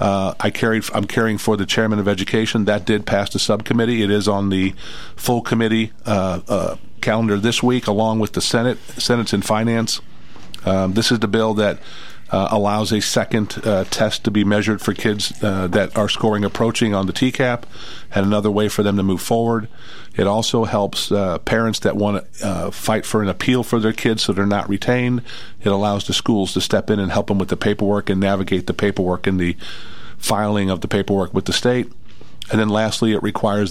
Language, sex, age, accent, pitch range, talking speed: English, male, 50-69, American, 100-110 Hz, 205 wpm